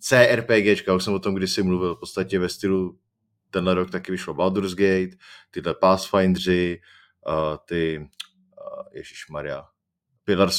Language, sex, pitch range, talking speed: Czech, male, 95-120 Hz, 135 wpm